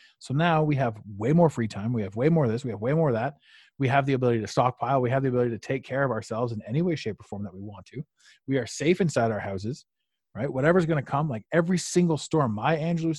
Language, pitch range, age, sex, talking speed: English, 120-165 Hz, 30-49, male, 280 wpm